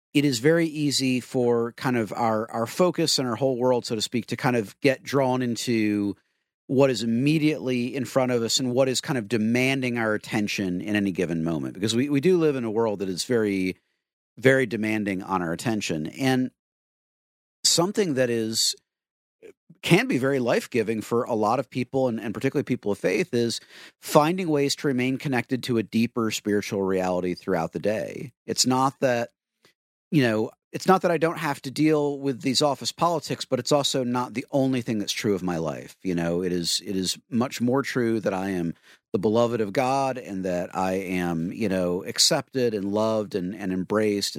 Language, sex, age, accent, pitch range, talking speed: English, male, 40-59, American, 105-140 Hz, 200 wpm